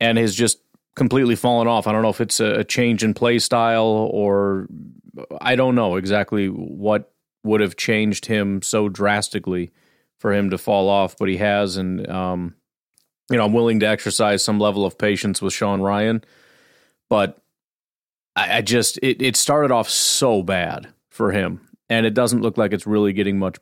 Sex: male